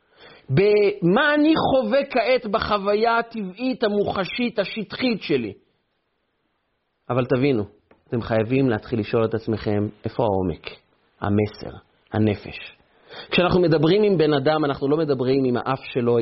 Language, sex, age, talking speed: Hebrew, male, 40-59, 120 wpm